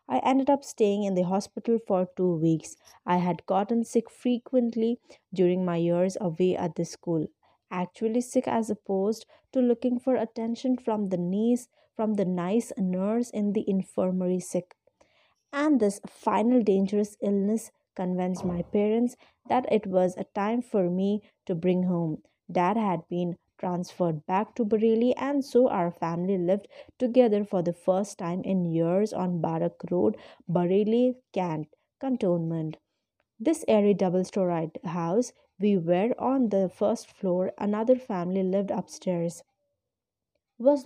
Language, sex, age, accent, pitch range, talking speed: English, female, 20-39, Indian, 180-235 Hz, 145 wpm